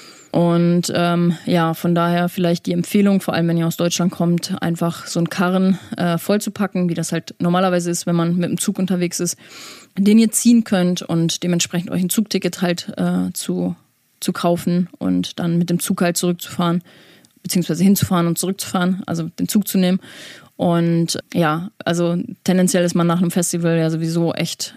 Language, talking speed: German, 180 wpm